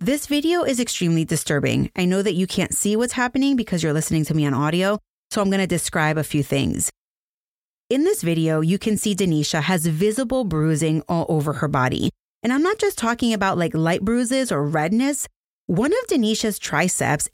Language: English